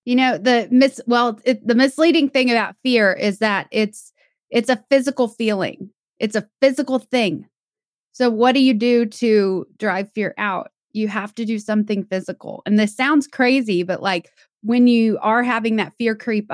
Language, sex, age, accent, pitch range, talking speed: English, female, 20-39, American, 200-245 Hz, 180 wpm